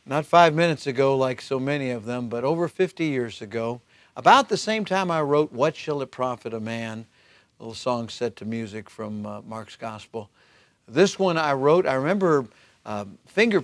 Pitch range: 115-140 Hz